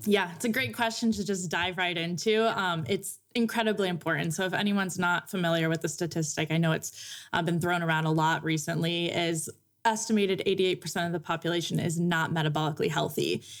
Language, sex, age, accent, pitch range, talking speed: English, female, 20-39, American, 165-200 Hz, 185 wpm